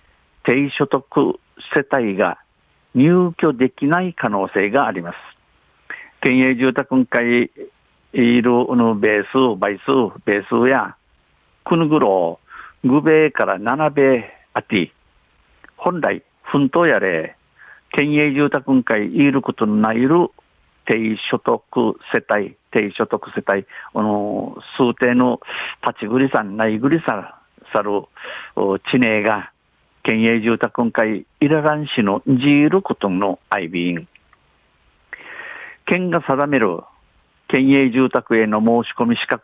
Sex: male